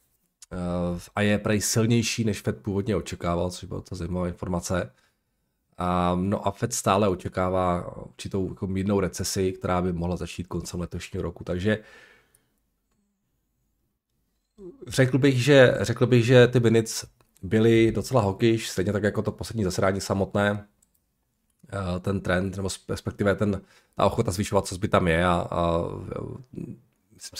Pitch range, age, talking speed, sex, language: 90-110 Hz, 40-59, 135 wpm, male, Czech